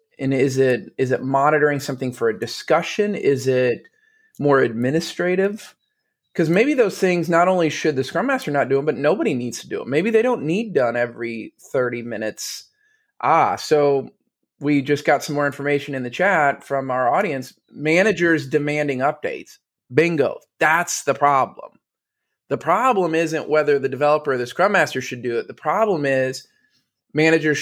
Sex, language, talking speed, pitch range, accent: male, English, 170 wpm, 130-180 Hz, American